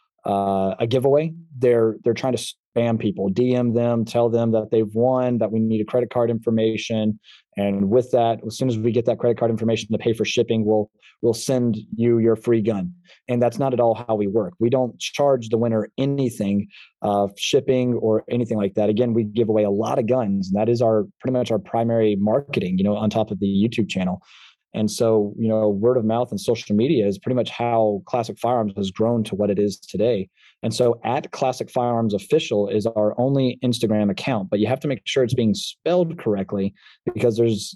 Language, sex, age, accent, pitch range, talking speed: English, male, 20-39, American, 110-125 Hz, 220 wpm